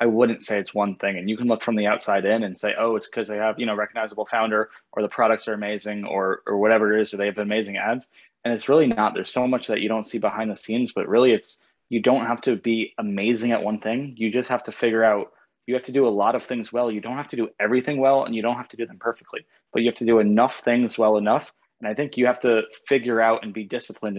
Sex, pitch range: male, 110-120 Hz